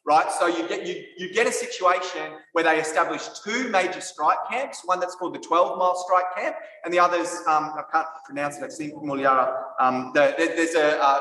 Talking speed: 215 wpm